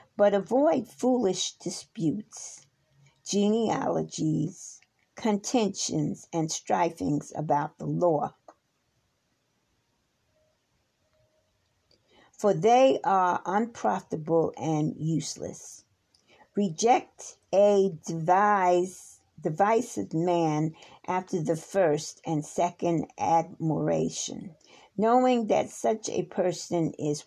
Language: English